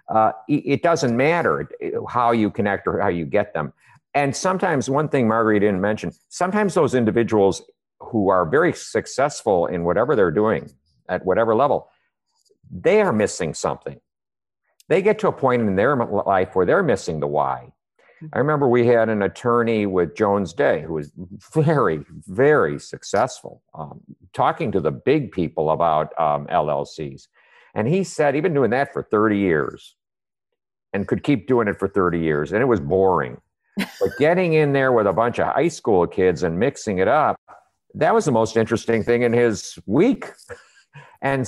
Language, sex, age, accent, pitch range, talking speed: English, male, 50-69, American, 95-140 Hz, 180 wpm